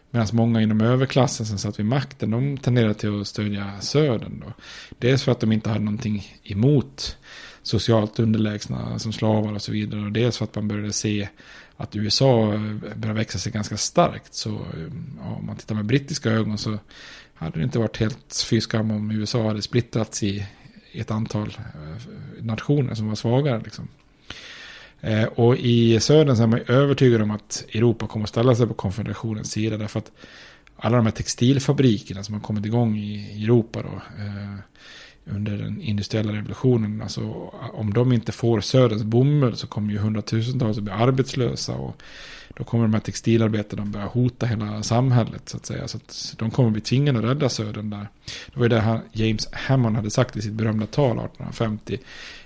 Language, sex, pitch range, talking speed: Swedish, male, 105-120 Hz, 175 wpm